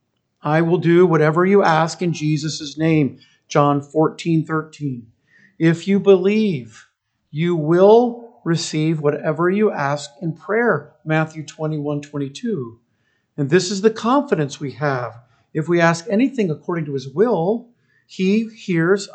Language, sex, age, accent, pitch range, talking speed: English, male, 50-69, American, 155-245 Hz, 140 wpm